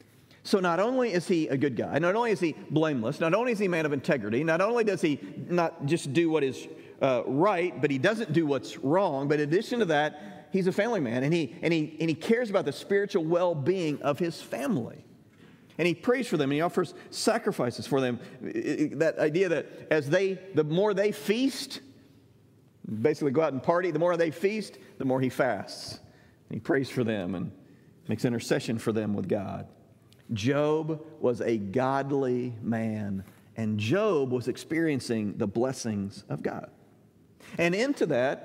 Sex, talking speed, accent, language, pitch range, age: male, 185 wpm, American, English, 125-180 Hz, 50-69